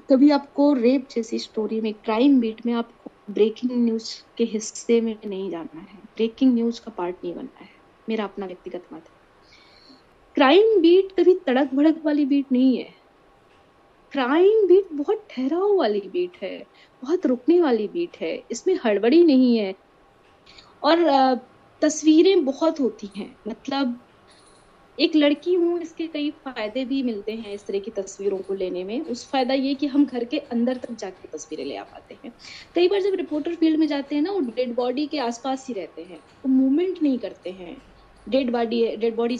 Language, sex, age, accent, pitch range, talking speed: Hindi, female, 20-39, native, 220-300 Hz, 125 wpm